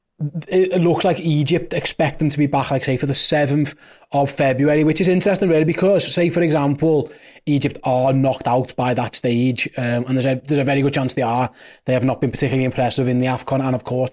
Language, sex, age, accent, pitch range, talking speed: English, male, 20-39, British, 135-165 Hz, 230 wpm